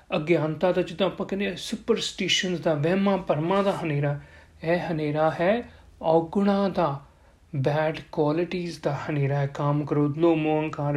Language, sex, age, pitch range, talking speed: Punjabi, male, 40-59, 170-225 Hz, 125 wpm